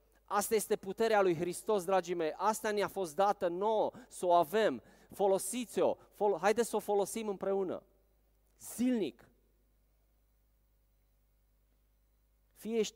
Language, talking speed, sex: Romanian, 105 wpm, male